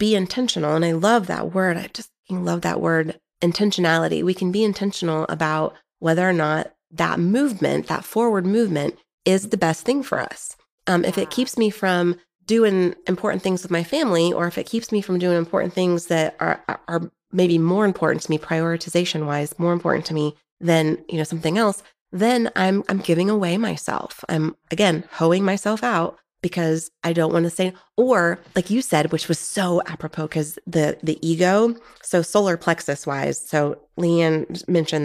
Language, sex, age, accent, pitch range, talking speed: English, female, 30-49, American, 160-195 Hz, 185 wpm